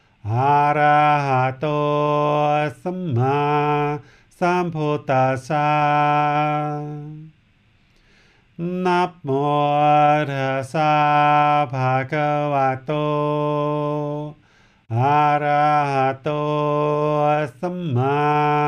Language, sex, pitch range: English, male, 145-150 Hz